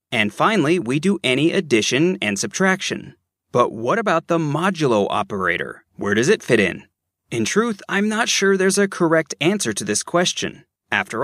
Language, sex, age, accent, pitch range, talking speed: English, male, 30-49, American, 115-185 Hz, 170 wpm